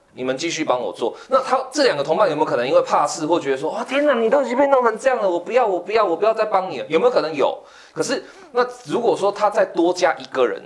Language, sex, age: Chinese, male, 20-39